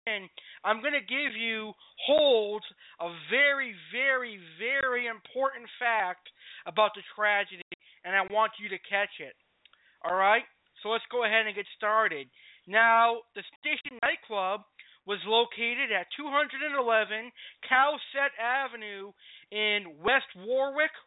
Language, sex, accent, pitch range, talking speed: English, male, American, 205-260 Hz, 120 wpm